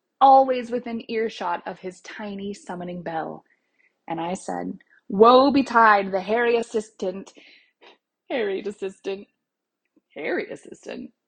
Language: English